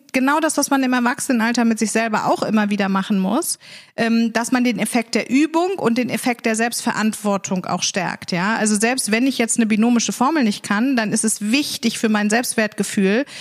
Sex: female